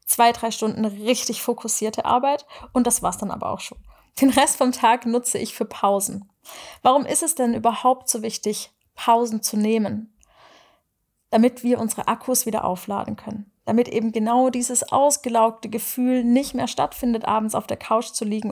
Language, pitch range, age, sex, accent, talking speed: German, 225-255 Hz, 30-49, female, German, 170 wpm